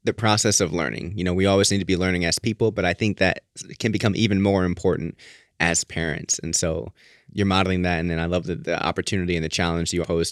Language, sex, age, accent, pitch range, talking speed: English, male, 20-39, American, 85-100 Hz, 245 wpm